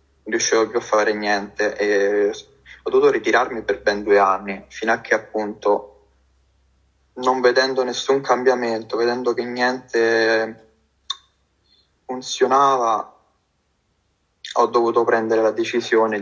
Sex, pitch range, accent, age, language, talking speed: male, 105-130 Hz, native, 20-39, Italian, 115 wpm